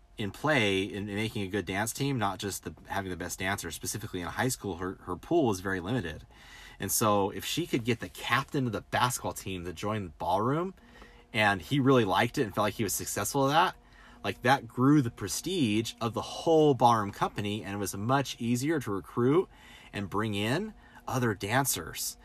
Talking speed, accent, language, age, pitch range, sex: 210 wpm, American, English, 30-49, 95-125 Hz, male